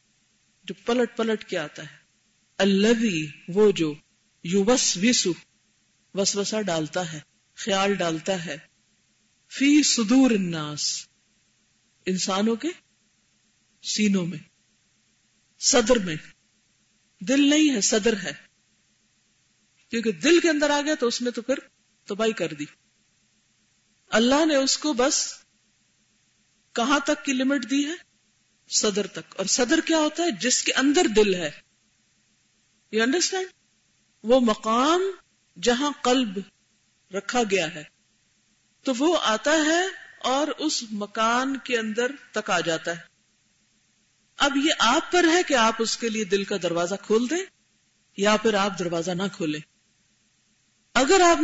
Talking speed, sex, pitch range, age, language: 130 wpm, female, 180-270 Hz, 50-69, Urdu